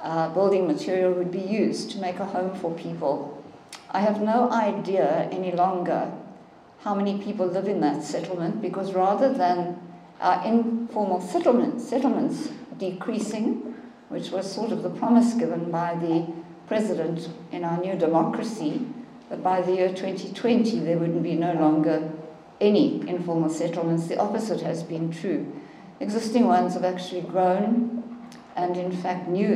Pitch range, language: 170-215 Hz, English